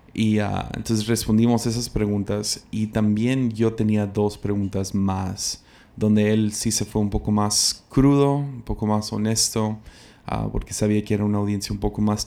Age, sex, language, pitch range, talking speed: 20-39, male, Spanish, 105-110 Hz, 165 wpm